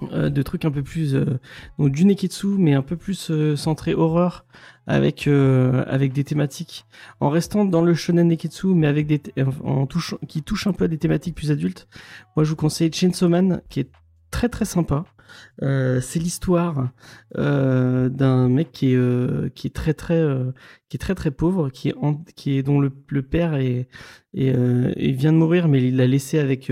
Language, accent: French, French